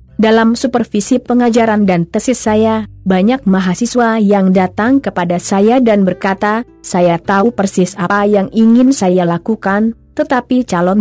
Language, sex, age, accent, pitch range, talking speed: Indonesian, female, 30-49, native, 185-240 Hz, 130 wpm